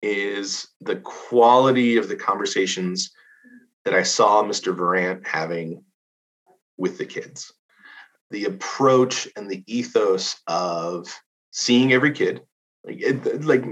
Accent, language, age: American, English, 30-49